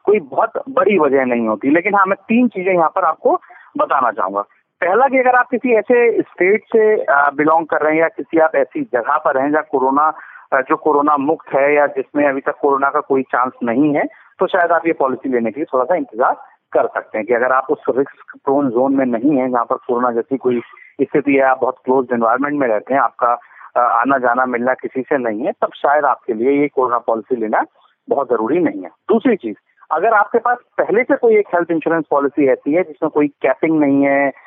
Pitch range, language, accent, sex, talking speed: 135-215 Hz, Hindi, native, male, 225 wpm